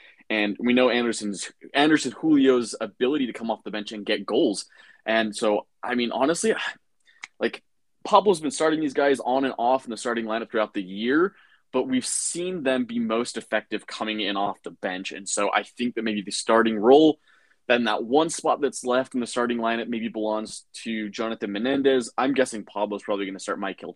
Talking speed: 200 wpm